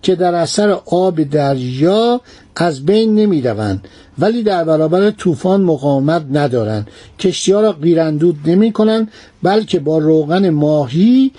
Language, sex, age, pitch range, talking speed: Persian, male, 60-79, 155-210 Hz, 130 wpm